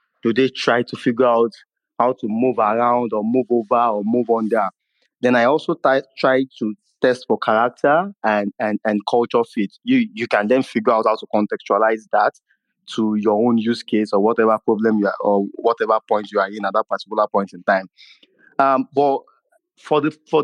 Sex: male